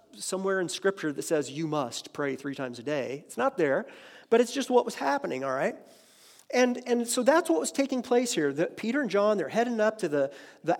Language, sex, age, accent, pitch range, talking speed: English, male, 40-59, American, 175-235 Hz, 235 wpm